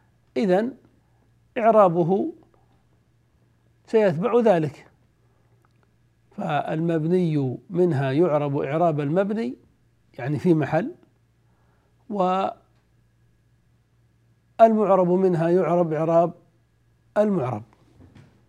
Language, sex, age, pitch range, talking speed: Arabic, male, 60-79, 120-195 Hz, 55 wpm